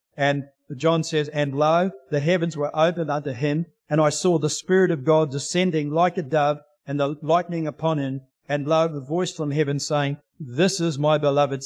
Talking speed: 195 wpm